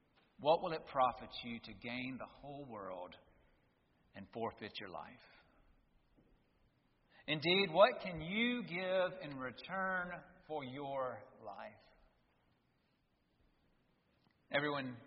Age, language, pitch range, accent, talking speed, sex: 40-59, English, 150-220 Hz, American, 100 wpm, male